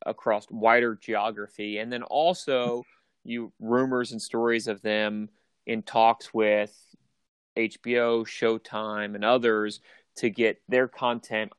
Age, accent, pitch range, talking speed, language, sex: 30-49, American, 110-120 Hz, 120 wpm, English, male